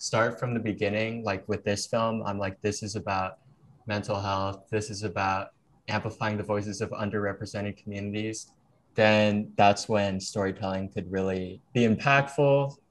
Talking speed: 150 wpm